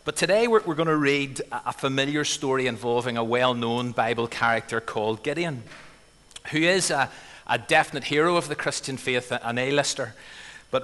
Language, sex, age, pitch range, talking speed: English, male, 30-49, 120-150 Hz, 155 wpm